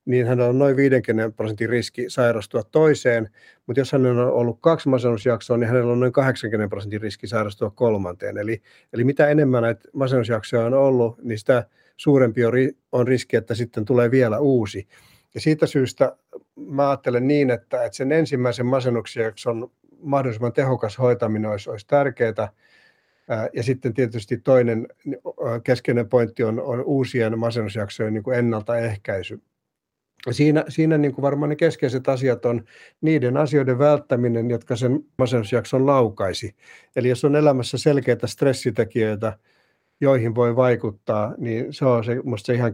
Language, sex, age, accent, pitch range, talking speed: Finnish, male, 50-69, native, 115-135 Hz, 145 wpm